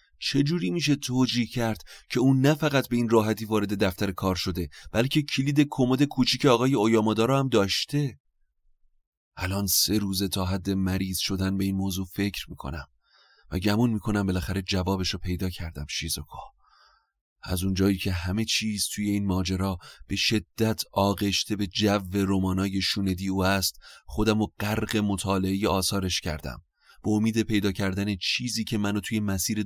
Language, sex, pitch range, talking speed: Persian, male, 95-110 Hz, 150 wpm